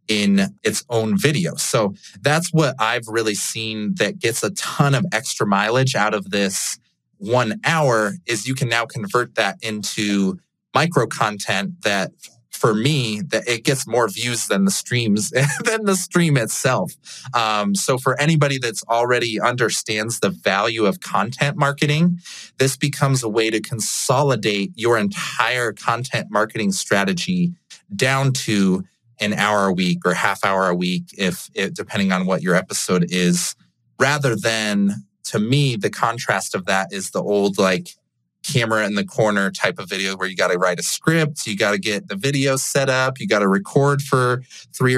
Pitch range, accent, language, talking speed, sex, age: 105-140 Hz, American, English, 170 wpm, male, 30-49